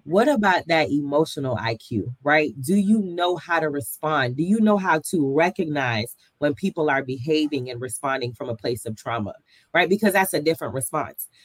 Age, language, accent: 30-49, English, American